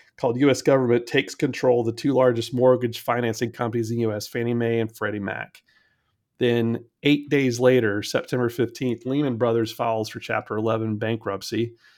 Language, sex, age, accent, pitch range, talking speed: English, male, 30-49, American, 110-120 Hz, 160 wpm